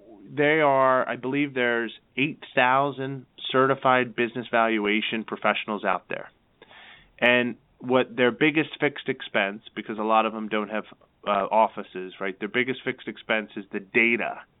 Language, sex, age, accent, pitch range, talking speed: English, male, 30-49, American, 100-120 Hz, 145 wpm